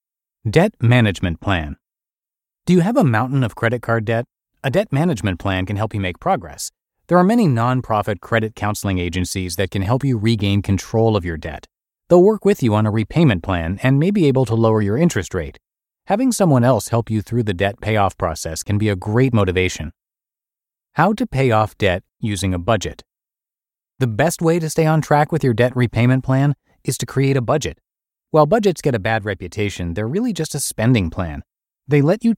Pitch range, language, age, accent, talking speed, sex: 100-145 Hz, English, 30-49, American, 200 wpm, male